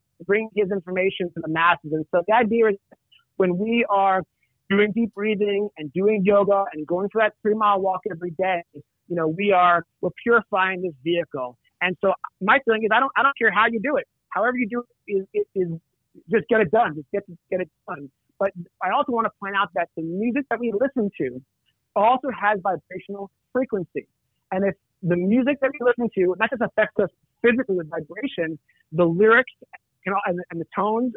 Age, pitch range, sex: 30-49, 175-215 Hz, male